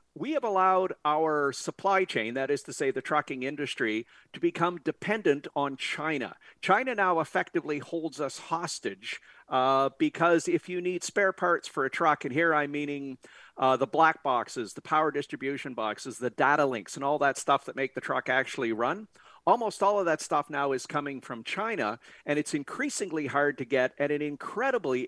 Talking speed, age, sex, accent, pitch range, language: 185 wpm, 50-69, male, American, 140-170 Hz, English